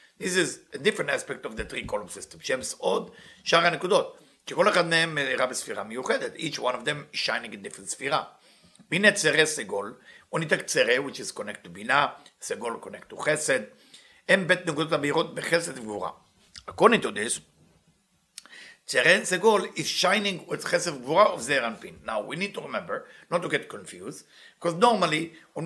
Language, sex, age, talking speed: English, male, 50-69, 150 wpm